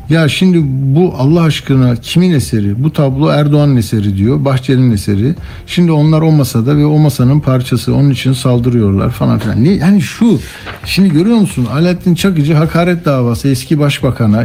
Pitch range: 120-155 Hz